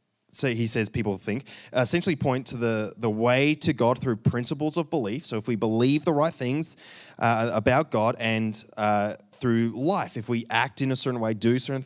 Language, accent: English, Australian